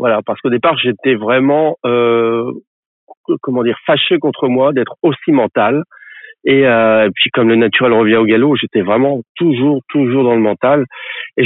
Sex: male